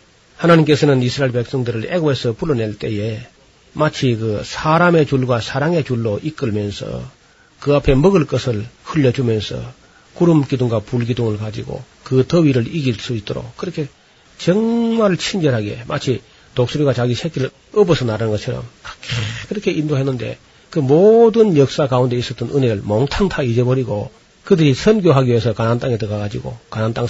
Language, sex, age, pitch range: Korean, male, 40-59, 120-160 Hz